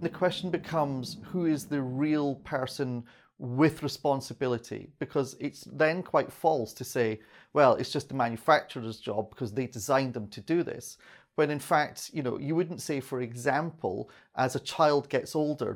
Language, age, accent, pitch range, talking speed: English, 30-49, British, 115-145 Hz, 170 wpm